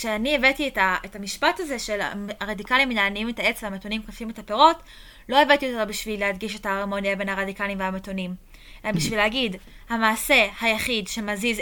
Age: 20-39